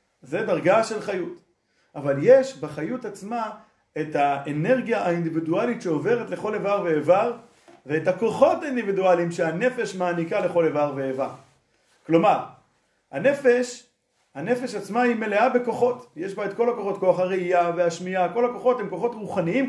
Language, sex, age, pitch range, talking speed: Hebrew, male, 40-59, 160-245 Hz, 125 wpm